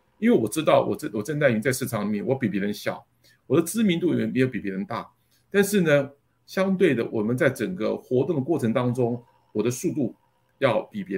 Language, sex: Chinese, male